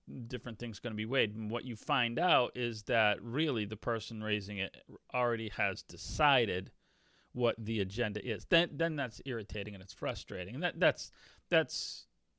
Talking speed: 175 wpm